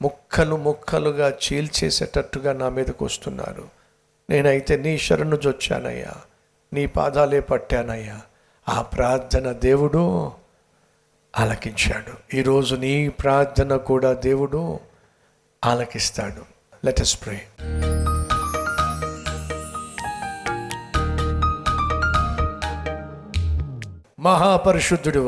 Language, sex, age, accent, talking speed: Telugu, male, 60-79, native, 65 wpm